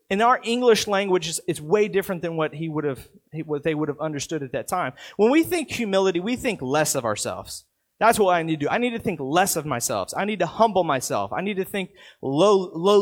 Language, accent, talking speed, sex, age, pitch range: English, American, 240 wpm, male, 30-49, 170-245 Hz